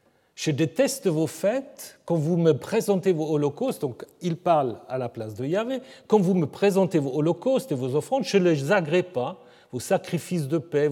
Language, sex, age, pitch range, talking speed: French, male, 40-59, 130-195 Hz, 200 wpm